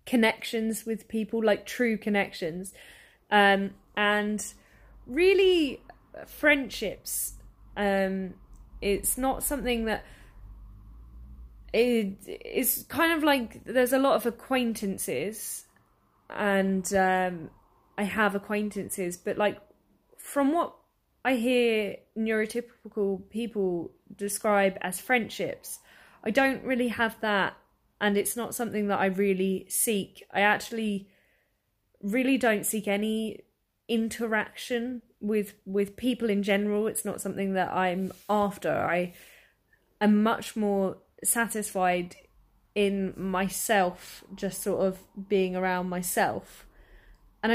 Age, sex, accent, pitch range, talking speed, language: 10-29, female, British, 190-230 Hz, 110 wpm, English